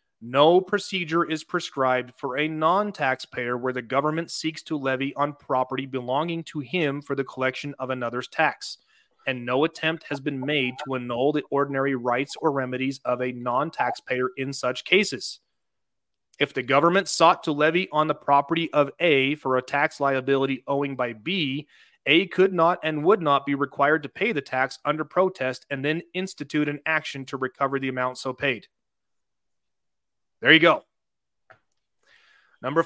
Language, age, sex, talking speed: English, 30-49, male, 165 wpm